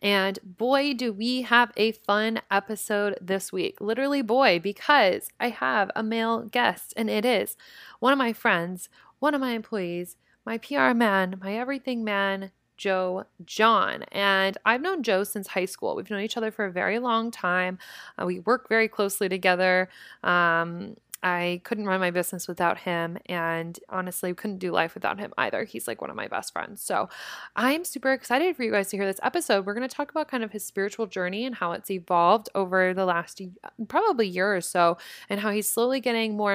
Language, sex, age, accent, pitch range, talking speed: English, female, 20-39, American, 185-230 Hz, 195 wpm